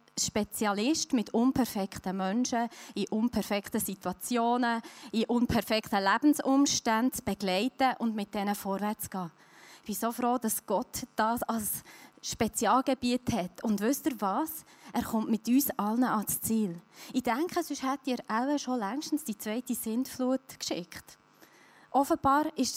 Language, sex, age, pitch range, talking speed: German, female, 20-39, 205-260 Hz, 135 wpm